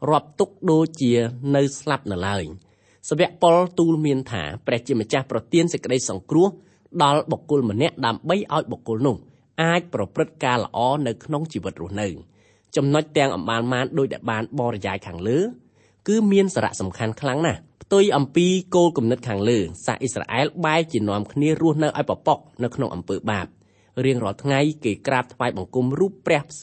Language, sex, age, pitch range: English, male, 30-49, 115-155 Hz